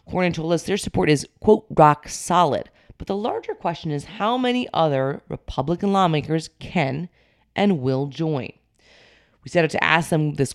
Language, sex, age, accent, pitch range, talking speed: English, female, 30-49, American, 145-190 Hz, 170 wpm